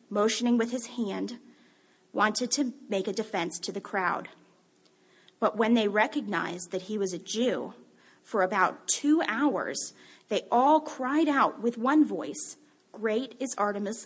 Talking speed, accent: 150 wpm, American